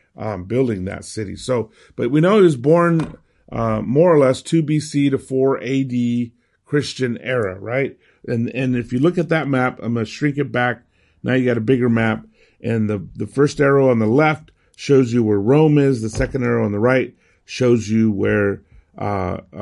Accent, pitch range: American, 110-140 Hz